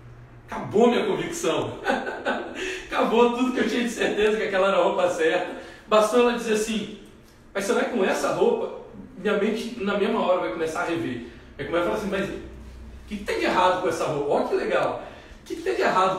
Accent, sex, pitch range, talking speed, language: Brazilian, male, 145-215 Hz, 210 wpm, Portuguese